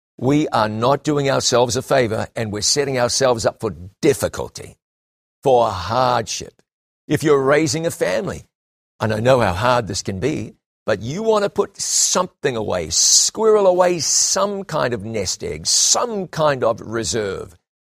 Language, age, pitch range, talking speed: English, 50-69, 120-155 Hz, 160 wpm